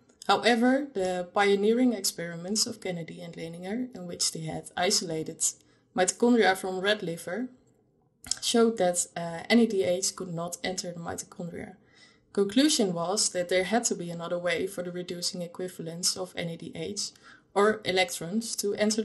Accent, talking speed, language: Dutch, 140 wpm, English